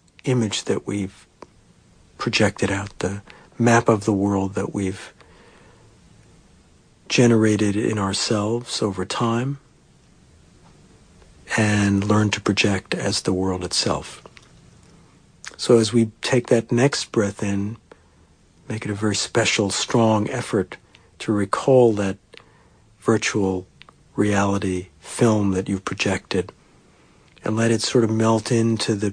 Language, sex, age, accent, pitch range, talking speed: English, male, 60-79, American, 95-110 Hz, 115 wpm